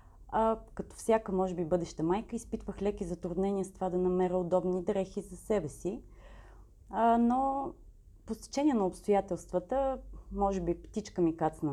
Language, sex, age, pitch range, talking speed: Bulgarian, female, 30-49, 175-225 Hz, 145 wpm